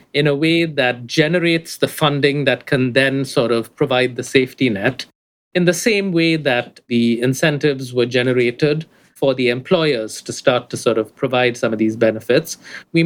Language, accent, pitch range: English, Indian, 120-145 Hz